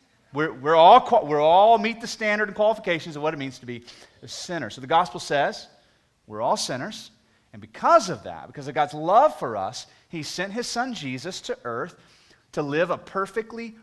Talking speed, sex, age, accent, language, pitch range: 205 wpm, male, 30-49, American, English, 130-205 Hz